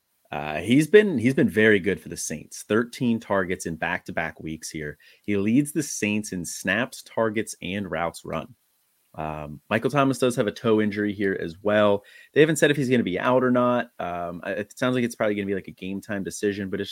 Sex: male